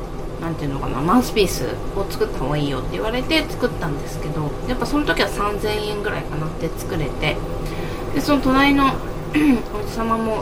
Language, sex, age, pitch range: Japanese, female, 20-39, 160-230 Hz